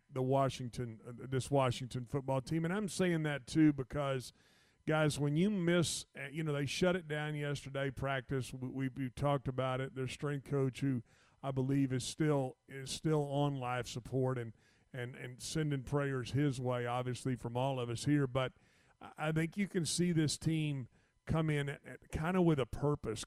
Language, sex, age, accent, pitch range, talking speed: English, male, 50-69, American, 130-155 Hz, 185 wpm